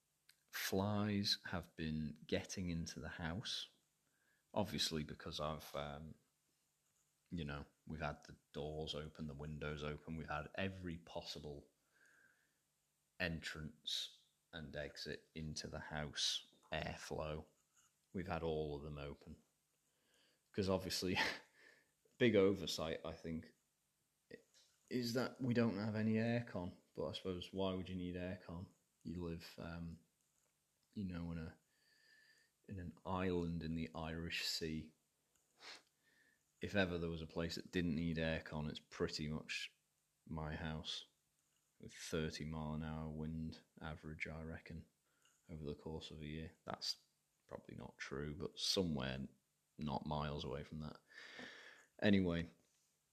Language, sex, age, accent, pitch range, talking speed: English, male, 30-49, British, 75-95 Hz, 130 wpm